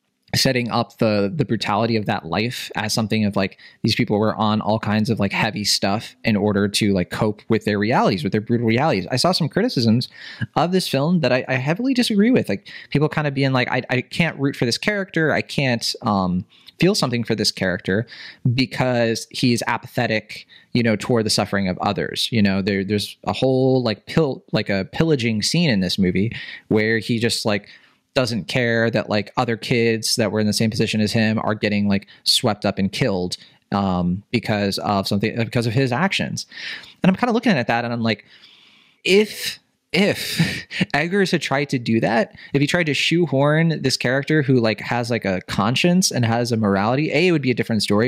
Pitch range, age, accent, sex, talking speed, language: 105-135 Hz, 20-39, American, male, 210 wpm, English